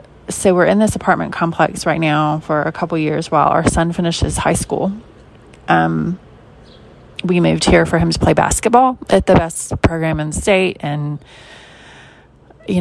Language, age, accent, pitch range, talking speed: English, 30-49, American, 130-185 Hz, 175 wpm